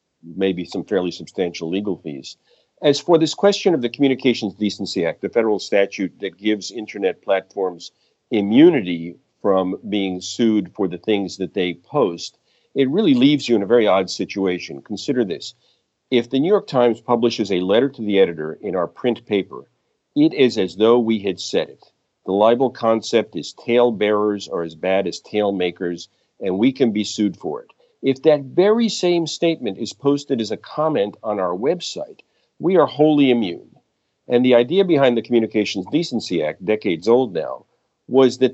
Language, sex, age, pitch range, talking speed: English, male, 50-69, 95-125 Hz, 180 wpm